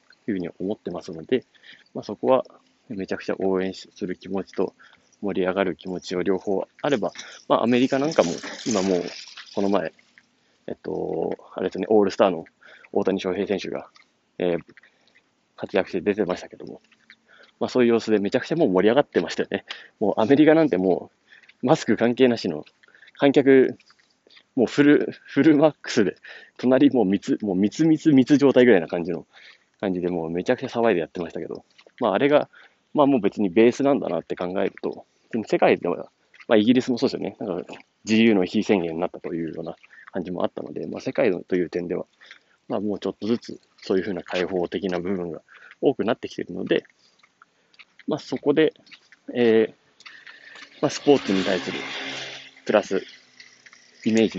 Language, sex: Japanese, male